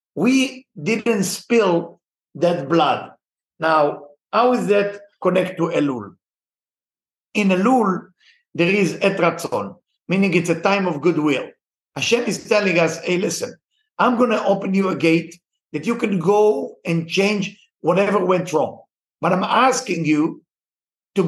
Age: 50-69